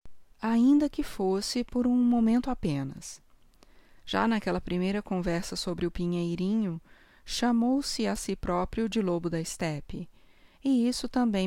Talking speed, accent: 130 wpm, Brazilian